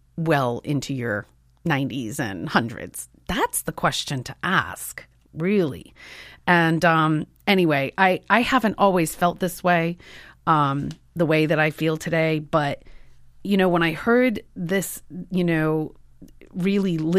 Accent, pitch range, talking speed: American, 140-180 Hz, 135 wpm